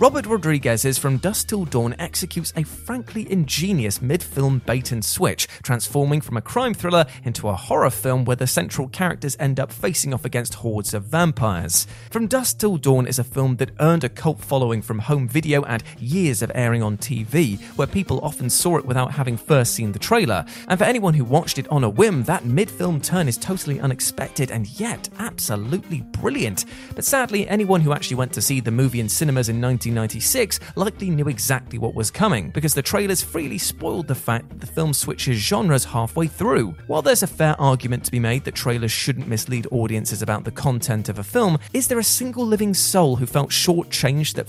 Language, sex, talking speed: English, male, 200 wpm